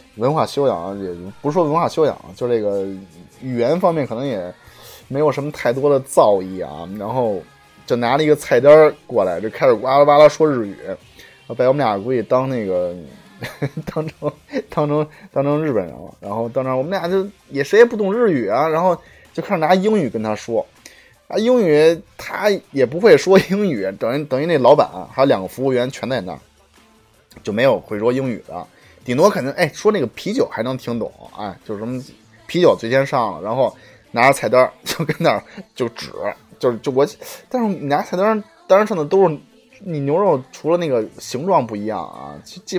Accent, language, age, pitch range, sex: native, Chinese, 20-39, 125-180 Hz, male